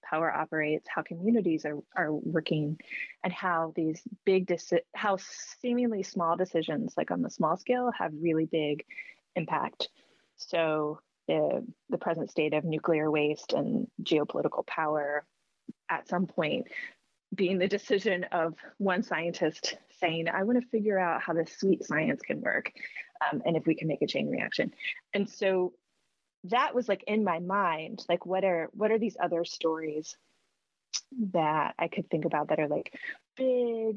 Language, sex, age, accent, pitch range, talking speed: English, female, 30-49, American, 160-205 Hz, 160 wpm